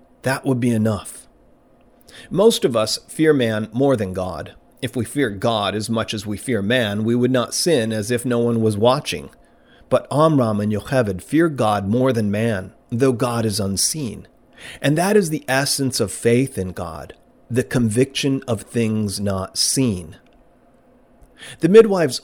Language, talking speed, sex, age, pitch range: English, 165 wpm, male, 40-59, 105-130 Hz